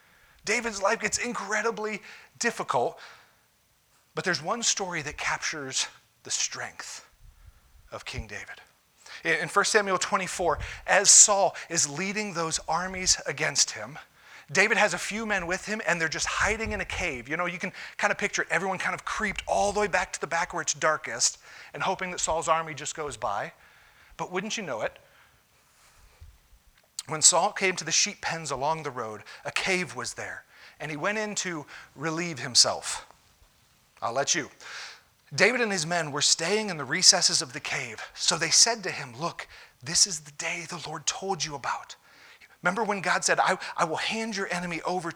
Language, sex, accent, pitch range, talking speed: English, male, American, 155-200 Hz, 185 wpm